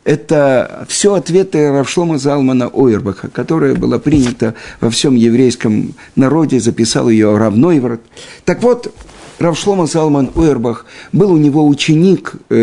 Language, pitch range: Russian, 130-175 Hz